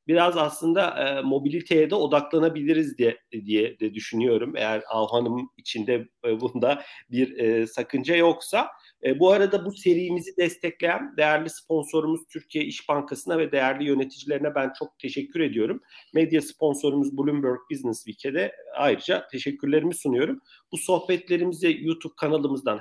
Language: Turkish